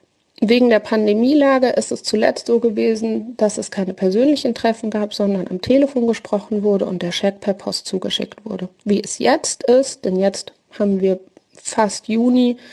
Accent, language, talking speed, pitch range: German, German, 170 wpm, 185-225 Hz